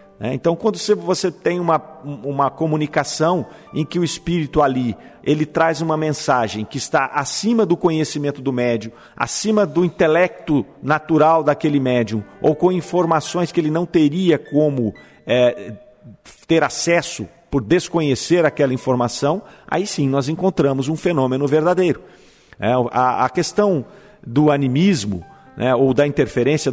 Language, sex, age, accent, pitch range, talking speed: Portuguese, male, 50-69, Brazilian, 125-165 Hz, 130 wpm